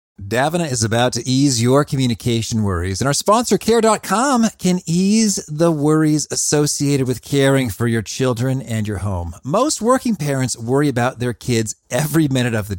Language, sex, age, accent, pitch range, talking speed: English, male, 40-59, American, 110-170 Hz, 170 wpm